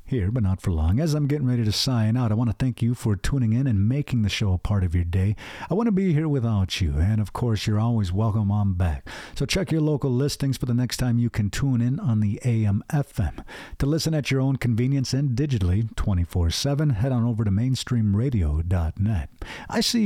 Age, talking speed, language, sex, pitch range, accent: 50-69, 225 wpm, English, male, 105-140 Hz, American